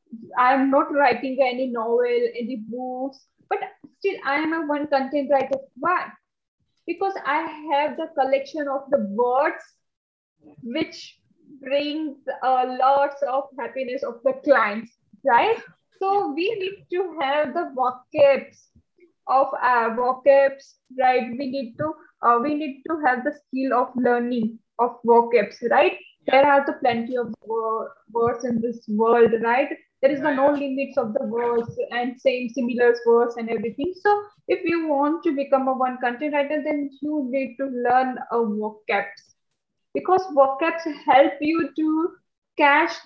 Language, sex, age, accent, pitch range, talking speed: Hindi, female, 20-39, native, 240-300 Hz, 155 wpm